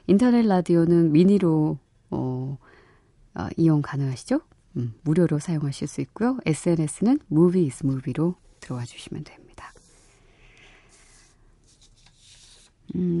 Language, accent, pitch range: Korean, native, 140-180 Hz